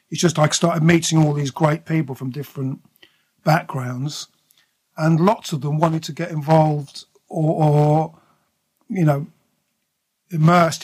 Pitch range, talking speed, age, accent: 145-165 Hz, 140 wpm, 50-69, British